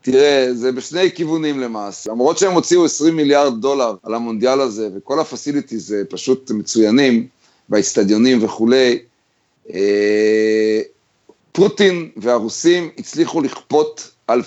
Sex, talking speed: male, 110 wpm